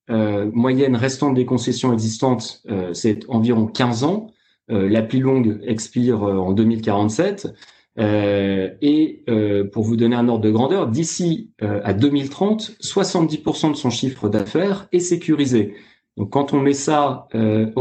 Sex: male